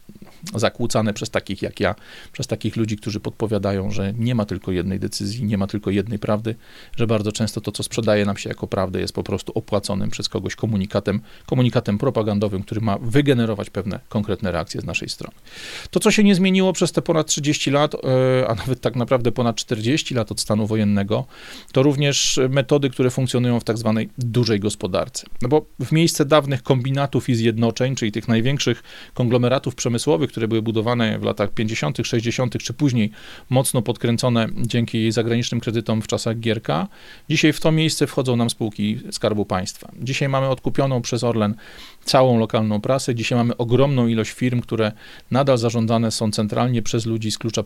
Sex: male